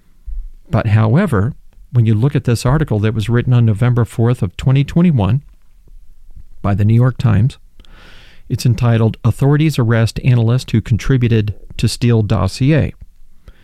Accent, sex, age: American, male, 40-59